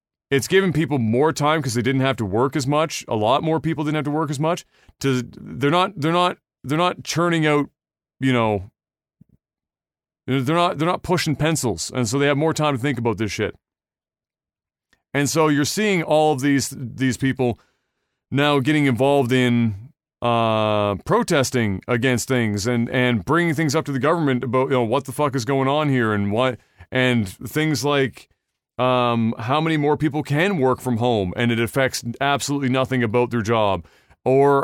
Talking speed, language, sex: 190 wpm, English, male